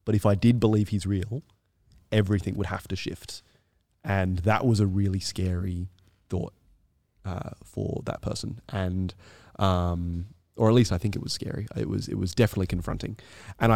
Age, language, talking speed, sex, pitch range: 20-39, English, 175 wpm, male, 95-110 Hz